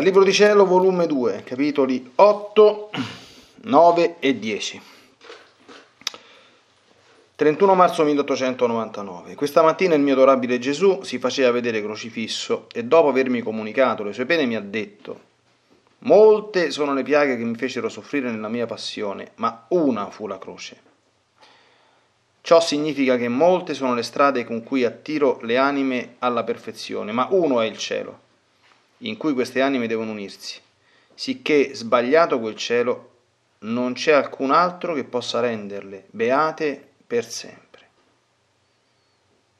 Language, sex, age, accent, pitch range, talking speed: Italian, male, 30-49, native, 120-160 Hz, 135 wpm